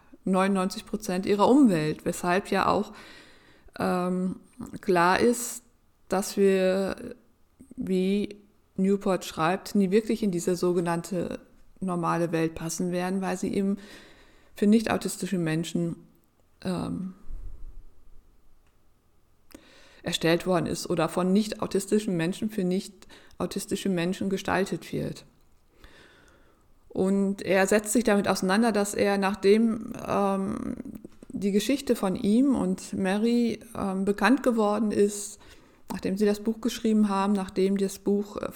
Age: 50-69